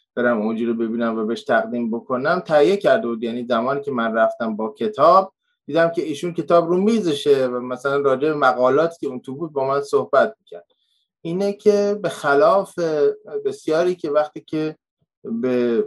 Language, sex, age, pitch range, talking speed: Persian, male, 20-39, 115-160 Hz, 165 wpm